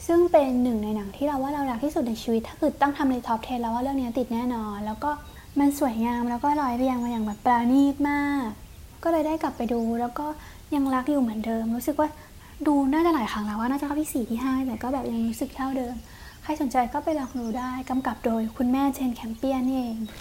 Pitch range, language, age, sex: 230-285 Hz, English, 20-39, female